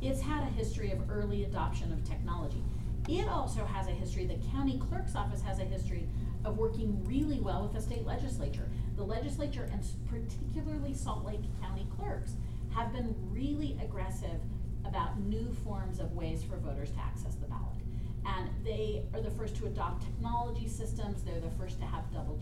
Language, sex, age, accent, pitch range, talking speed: English, female, 40-59, American, 110-115 Hz, 180 wpm